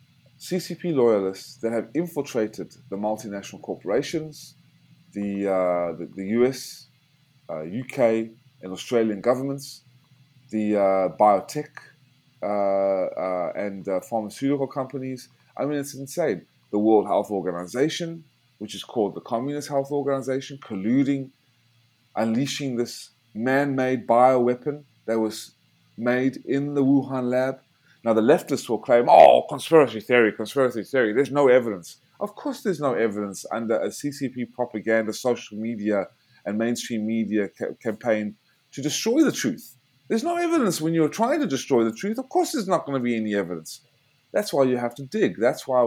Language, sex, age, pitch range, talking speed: English, male, 20-39, 110-140 Hz, 150 wpm